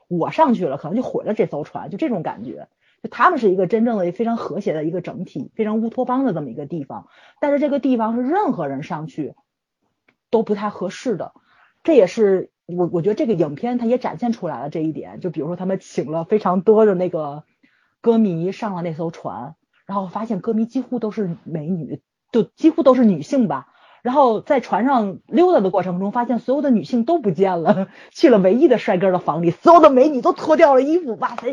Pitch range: 185-270 Hz